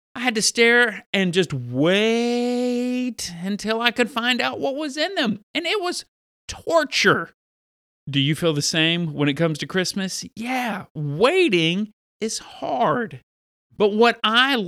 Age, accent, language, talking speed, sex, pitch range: 40-59, American, English, 150 wpm, male, 160-230 Hz